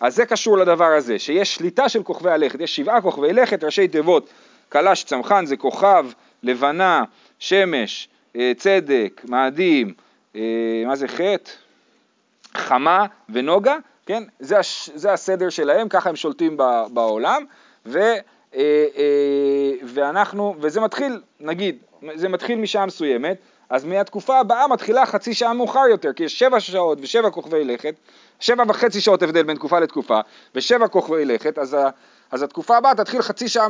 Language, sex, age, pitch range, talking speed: Hebrew, male, 40-59, 145-220 Hz, 140 wpm